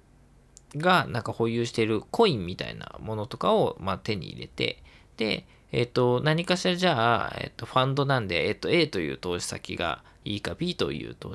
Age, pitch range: 20-39, 100-170 Hz